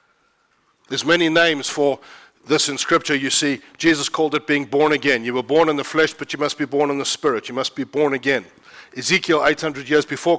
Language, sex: English, male